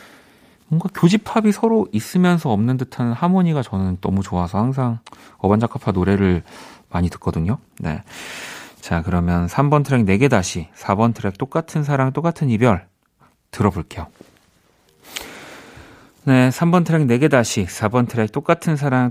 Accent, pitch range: native, 100-145 Hz